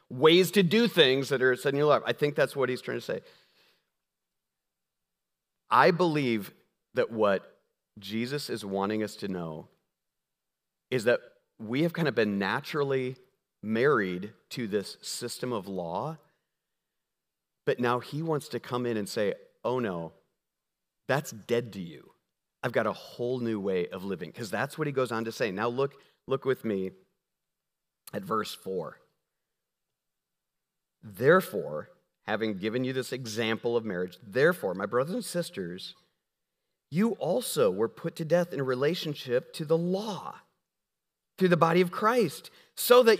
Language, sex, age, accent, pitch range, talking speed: English, male, 40-59, American, 125-205 Hz, 155 wpm